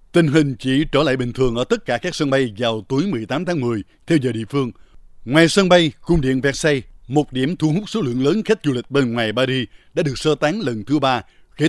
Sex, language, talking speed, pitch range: male, Vietnamese, 250 wpm, 125-155 Hz